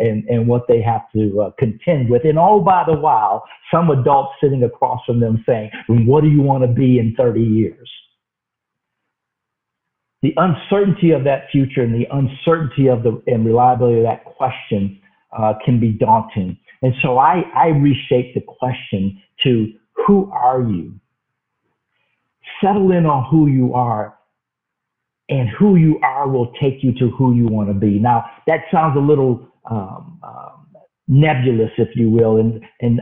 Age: 50-69